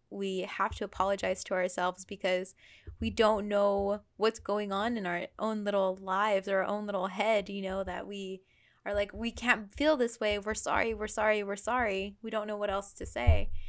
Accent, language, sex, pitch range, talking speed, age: American, English, female, 200-250 Hz, 205 wpm, 10-29